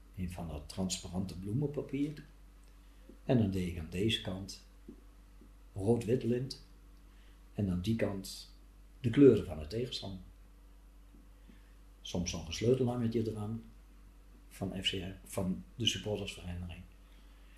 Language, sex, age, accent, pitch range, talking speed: Dutch, male, 50-69, Dutch, 90-105 Hz, 110 wpm